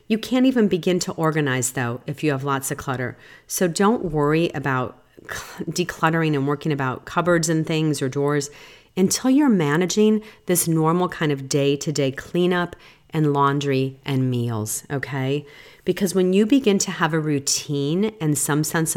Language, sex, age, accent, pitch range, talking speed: English, female, 40-59, American, 140-175 Hz, 160 wpm